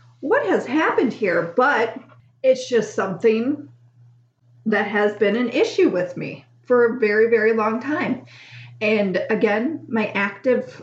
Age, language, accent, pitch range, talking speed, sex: 40-59, English, American, 175-235 Hz, 140 wpm, female